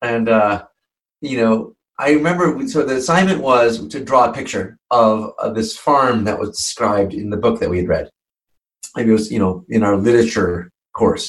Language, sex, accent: English, male, American